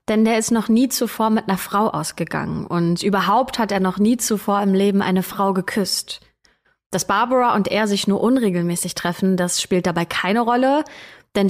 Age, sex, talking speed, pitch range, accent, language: 20-39, female, 190 wpm, 185-220 Hz, German, German